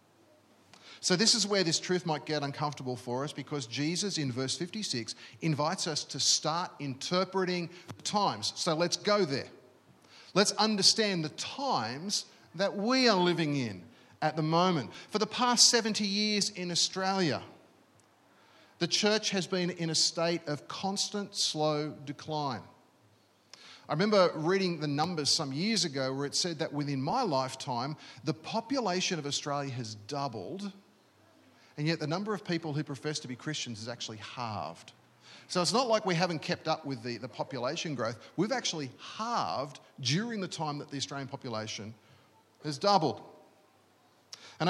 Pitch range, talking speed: 140-195 Hz, 155 wpm